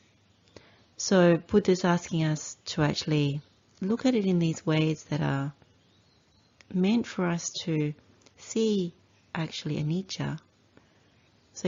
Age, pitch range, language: 40-59, 110-170 Hz, English